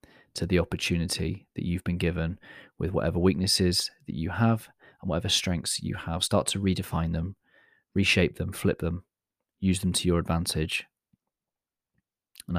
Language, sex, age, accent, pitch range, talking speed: English, male, 30-49, British, 85-105 Hz, 150 wpm